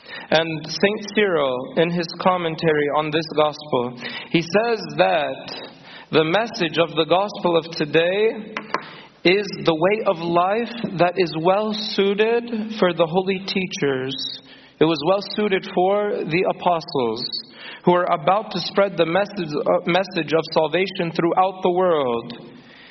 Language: English